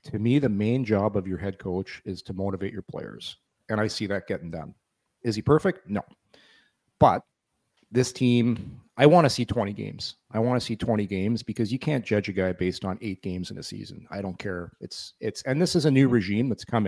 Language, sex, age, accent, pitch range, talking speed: English, male, 40-59, American, 105-135 Hz, 230 wpm